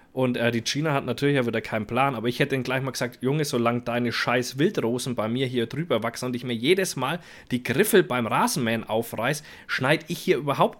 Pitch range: 120-160 Hz